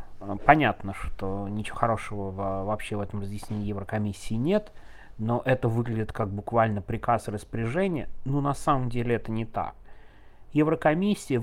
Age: 30-49